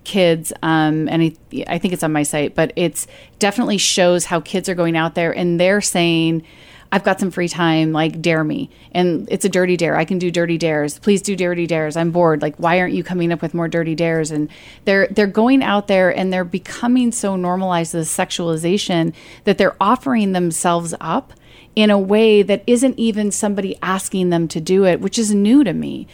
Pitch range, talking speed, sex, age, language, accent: 175-220 Hz, 210 wpm, female, 30-49, English, American